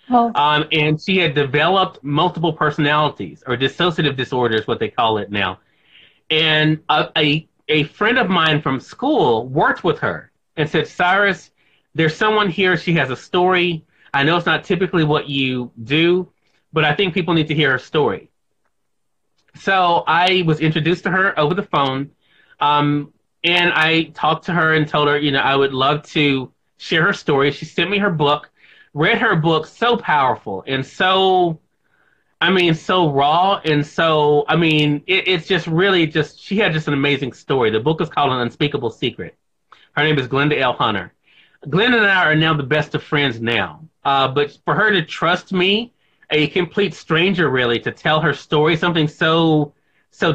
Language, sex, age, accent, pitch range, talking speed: Telugu, male, 30-49, American, 145-180 Hz, 180 wpm